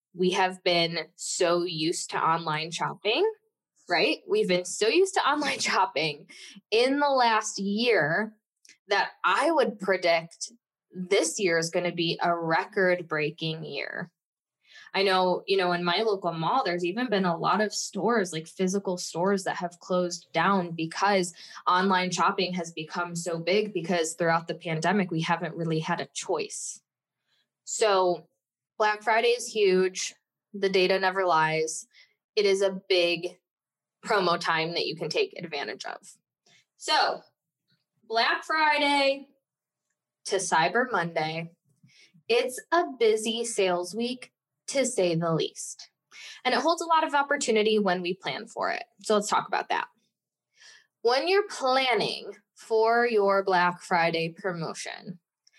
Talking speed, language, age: 145 wpm, English, 10-29